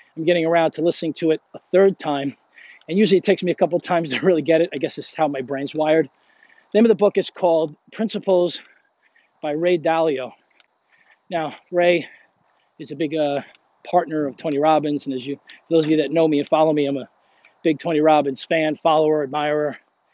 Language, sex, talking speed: English, male, 215 wpm